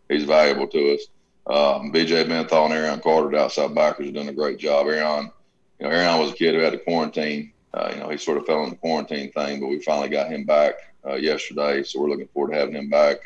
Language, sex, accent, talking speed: English, male, American, 255 wpm